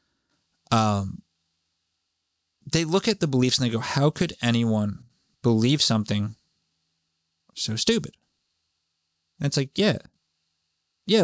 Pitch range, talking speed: 80-130 Hz, 110 wpm